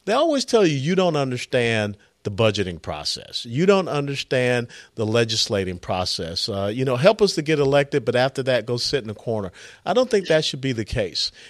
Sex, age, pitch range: male, 50-69, 115-160 Hz